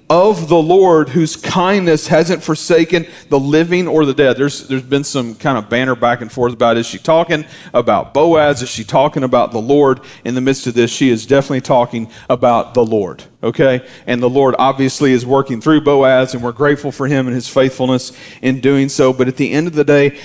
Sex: male